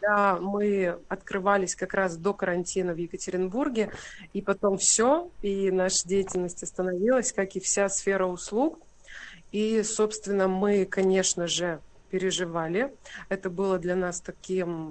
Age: 30-49